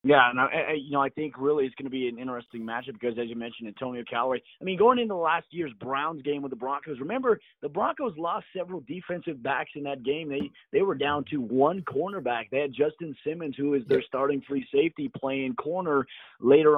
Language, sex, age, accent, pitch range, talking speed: English, male, 30-49, American, 120-145 Hz, 225 wpm